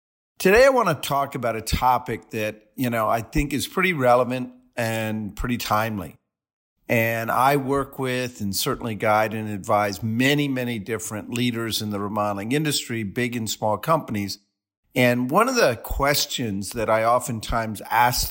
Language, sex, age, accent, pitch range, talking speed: English, male, 50-69, American, 110-135 Hz, 160 wpm